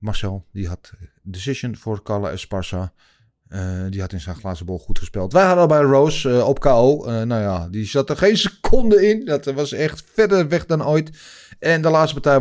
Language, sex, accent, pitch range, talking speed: Dutch, male, Dutch, 105-150 Hz, 210 wpm